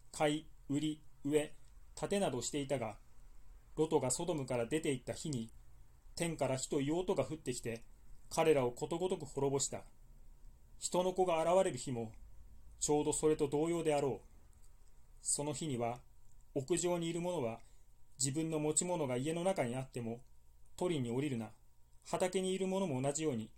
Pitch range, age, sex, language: 110-155 Hz, 30-49, male, Japanese